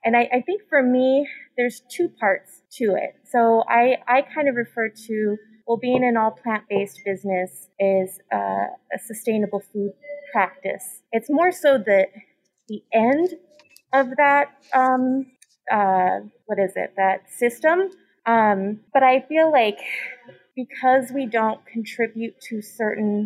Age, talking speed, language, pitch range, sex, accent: 20-39, 145 wpm, English, 200-255 Hz, female, American